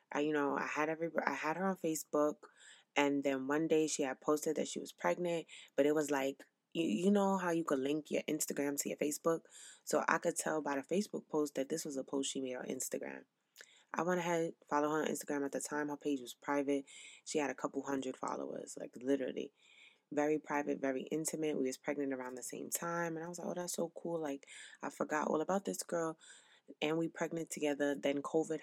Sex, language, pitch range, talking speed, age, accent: female, English, 140-170 Hz, 230 wpm, 20-39, American